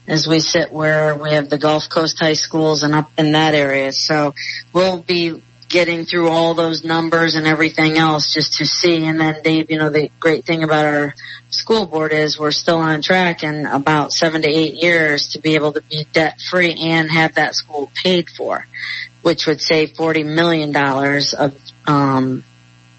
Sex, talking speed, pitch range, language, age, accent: female, 195 wpm, 150-175 Hz, English, 40-59, American